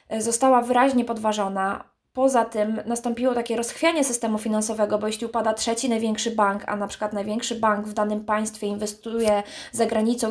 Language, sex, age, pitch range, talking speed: Polish, female, 20-39, 215-255 Hz, 155 wpm